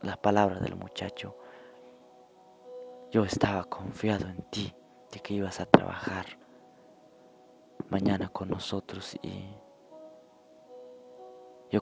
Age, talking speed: 20-39, 95 wpm